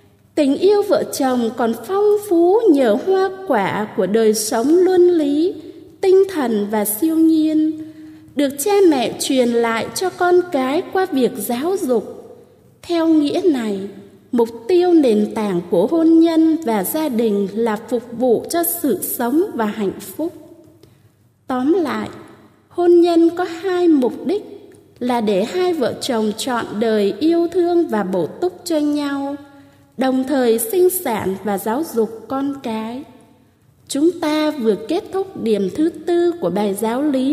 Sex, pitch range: female, 235-345 Hz